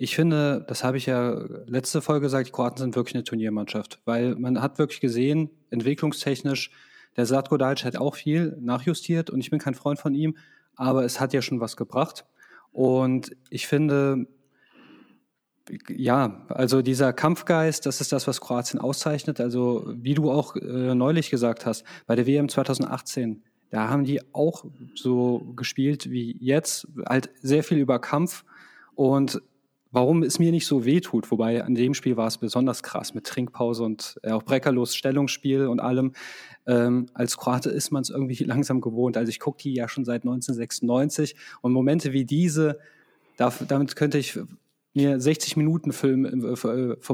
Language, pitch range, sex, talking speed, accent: German, 125-145 Hz, male, 170 wpm, German